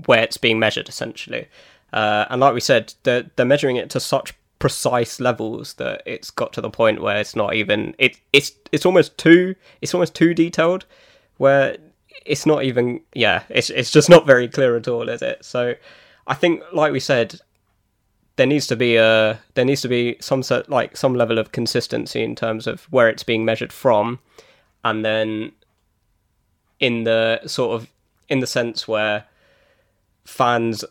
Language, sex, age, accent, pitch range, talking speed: English, male, 20-39, British, 110-135 Hz, 180 wpm